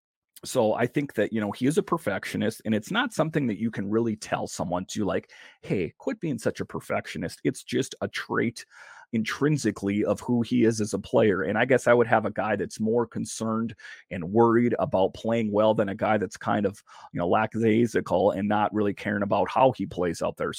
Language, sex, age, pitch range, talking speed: English, male, 30-49, 105-125 Hz, 220 wpm